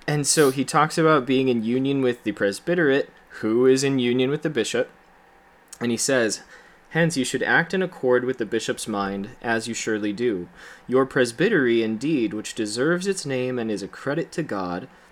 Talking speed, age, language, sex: 190 wpm, 20-39, English, male